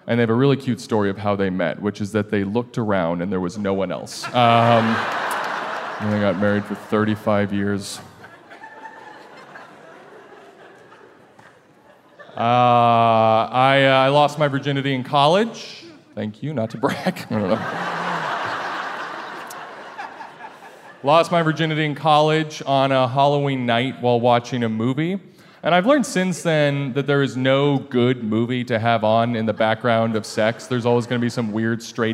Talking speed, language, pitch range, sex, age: 155 wpm, English, 115-140 Hz, male, 30-49